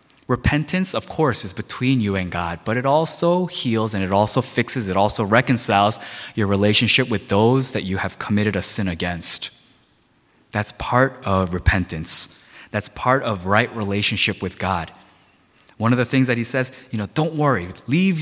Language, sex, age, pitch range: Korean, male, 20-39, 100-130 Hz